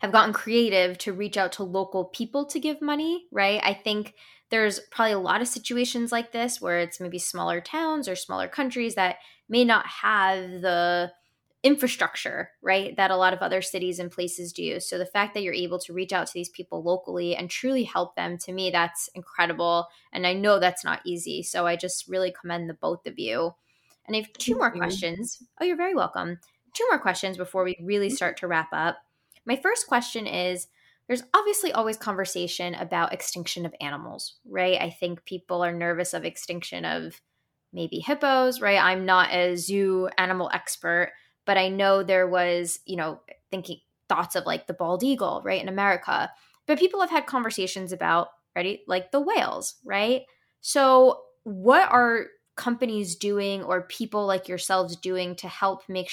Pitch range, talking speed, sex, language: 180-230 Hz, 185 wpm, female, English